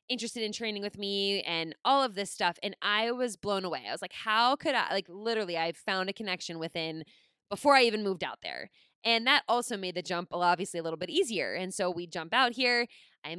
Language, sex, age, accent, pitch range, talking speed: English, female, 20-39, American, 190-255 Hz, 235 wpm